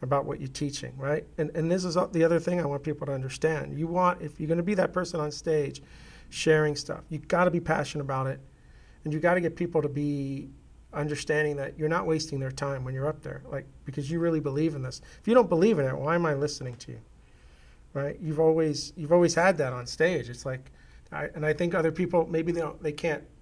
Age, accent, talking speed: 40-59, American, 240 wpm